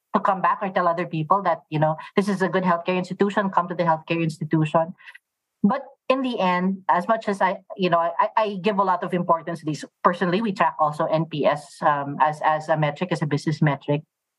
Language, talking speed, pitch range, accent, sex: English, 225 wpm, 160-200 Hz, Filipino, female